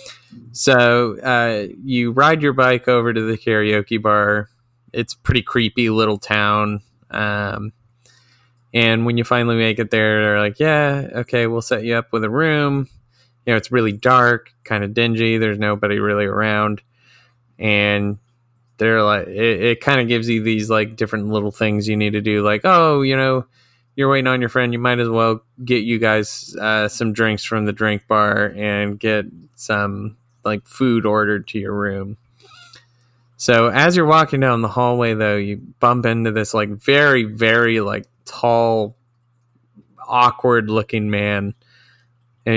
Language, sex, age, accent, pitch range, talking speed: English, male, 20-39, American, 105-125 Hz, 165 wpm